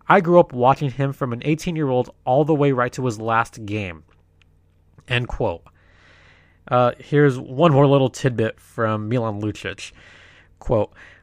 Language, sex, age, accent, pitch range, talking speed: English, male, 20-39, American, 95-145 Hz, 150 wpm